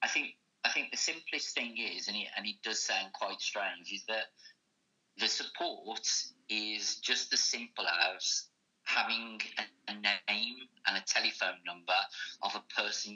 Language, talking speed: English, 165 wpm